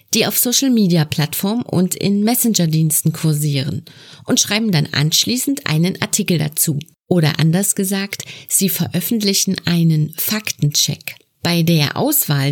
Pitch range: 160-200 Hz